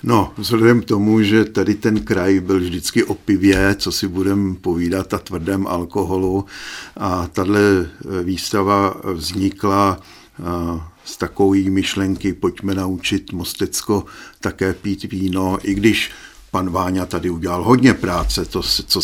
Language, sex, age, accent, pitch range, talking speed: Czech, male, 50-69, native, 90-100 Hz, 130 wpm